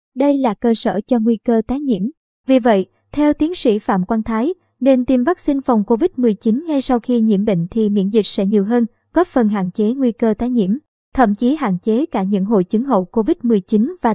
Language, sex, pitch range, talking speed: Vietnamese, male, 220-275 Hz, 220 wpm